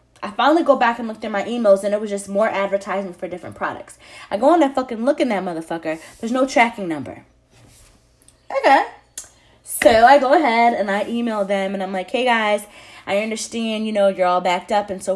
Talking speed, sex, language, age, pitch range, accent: 220 wpm, female, English, 20-39, 190-235 Hz, American